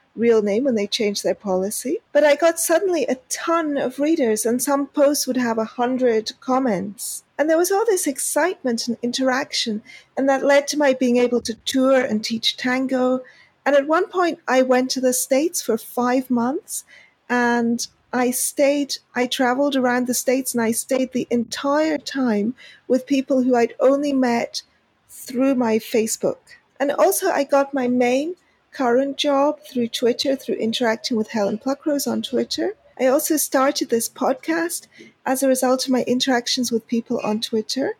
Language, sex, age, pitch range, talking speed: English, female, 40-59, 240-285 Hz, 175 wpm